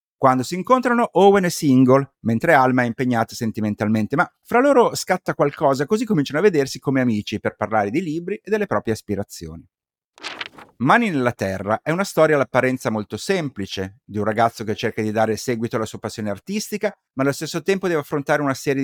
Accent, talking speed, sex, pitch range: native, 190 wpm, male, 110-155 Hz